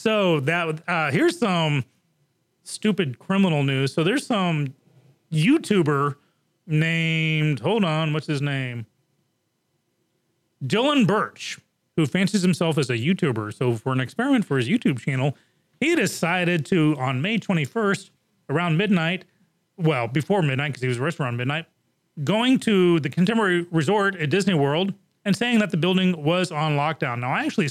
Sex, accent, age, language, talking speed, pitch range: male, American, 30-49, English, 150 wpm, 150-185 Hz